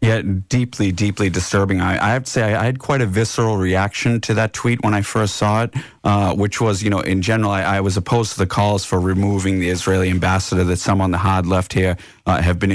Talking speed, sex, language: 250 wpm, male, English